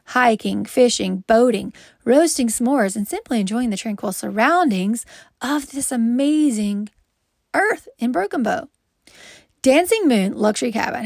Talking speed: 120 wpm